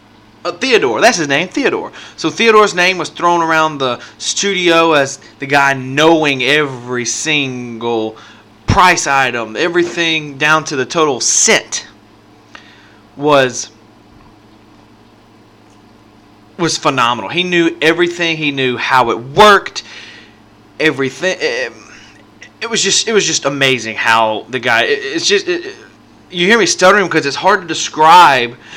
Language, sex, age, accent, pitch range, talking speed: English, male, 30-49, American, 110-175 Hz, 135 wpm